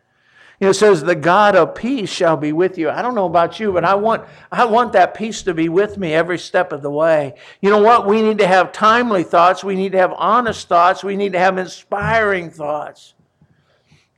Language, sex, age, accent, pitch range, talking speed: English, male, 60-79, American, 170-225 Hz, 225 wpm